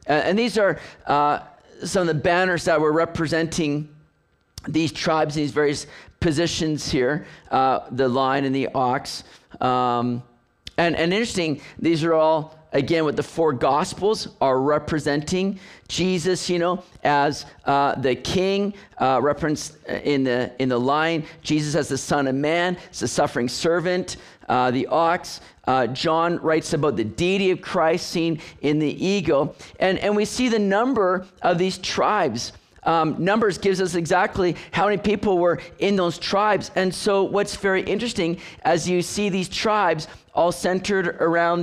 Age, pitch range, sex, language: 40-59, 140-180 Hz, male, English